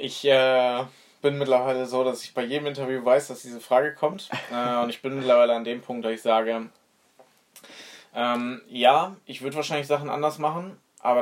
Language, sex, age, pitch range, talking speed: German, male, 20-39, 115-135 Hz, 185 wpm